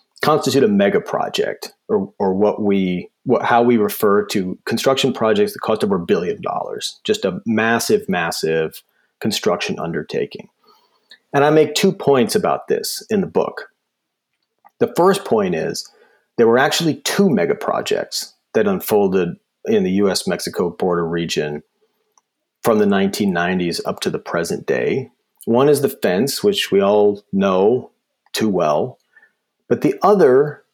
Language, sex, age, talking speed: English, male, 40-59, 150 wpm